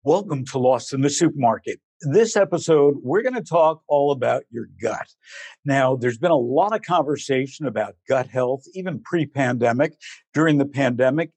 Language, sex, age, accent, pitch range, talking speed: English, male, 60-79, American, 130-160 Hz, 165 wpm